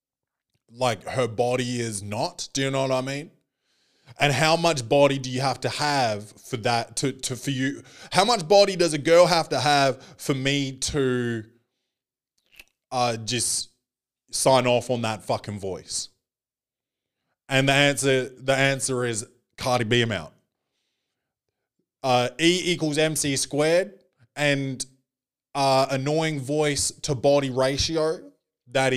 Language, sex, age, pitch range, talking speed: English, male, 20-39, 125-155 Hz, 140 wpm